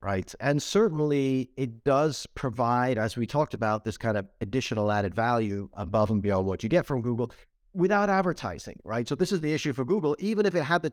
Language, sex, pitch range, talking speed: English, male, 110-150 Hz, 215 wpm